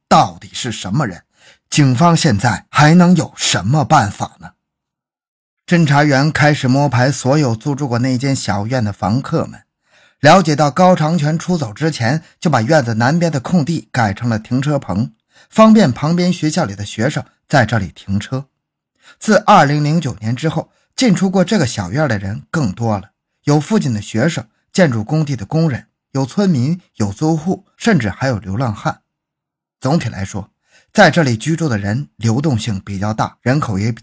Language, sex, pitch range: Chinese, male, 110-165 Hz